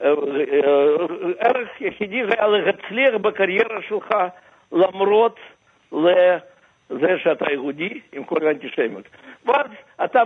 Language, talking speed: Hebrew, 90 wpm